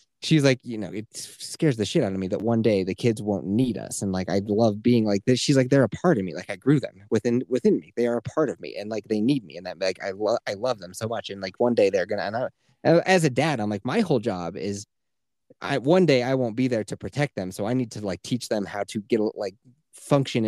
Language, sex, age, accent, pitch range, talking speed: English, male, 30-49, American, 100-145 Hz, 295 wpm